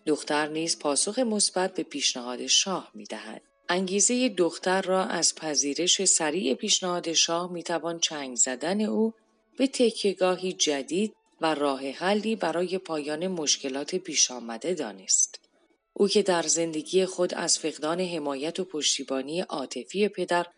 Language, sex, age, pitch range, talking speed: Persian, female, 30-49, 145-195 Hz, 130 wpm